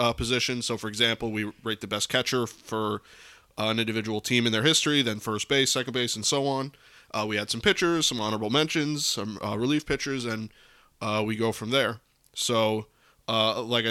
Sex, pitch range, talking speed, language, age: male, 110-130 Hz, 205 wpm, English, 20-39